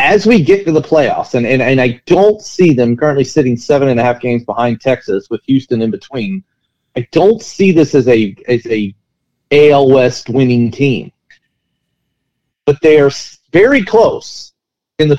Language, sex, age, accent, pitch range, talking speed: English, male, 40-59, American, 125-170 Hz, 180 wpm